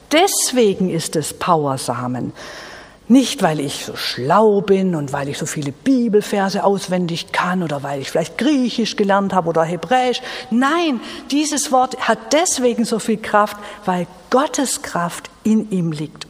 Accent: German